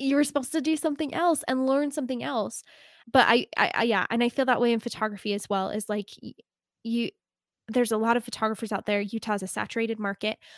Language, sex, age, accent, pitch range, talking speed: English, female, 10-29, American, 210-250 Hz, 220 wpm